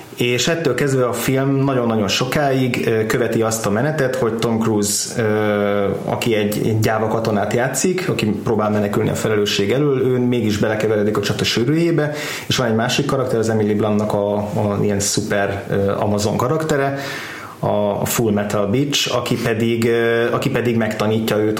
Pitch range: 110-125 Hz